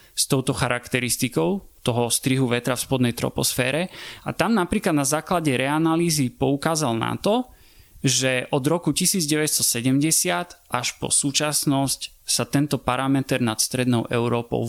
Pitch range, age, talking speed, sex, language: 125-160 Hz, 30-49, 125 wpm, male, Slovak